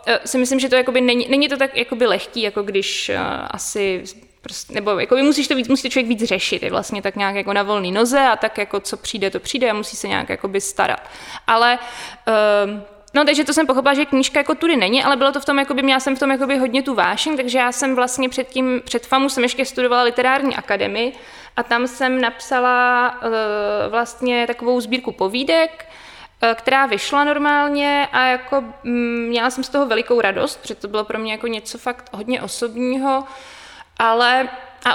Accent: native